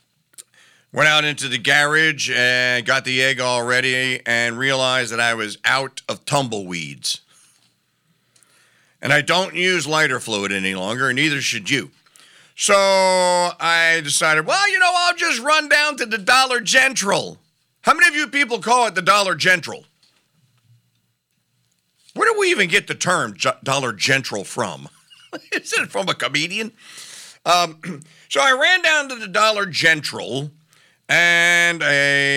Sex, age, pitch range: male, 50-69, 120-170 Hz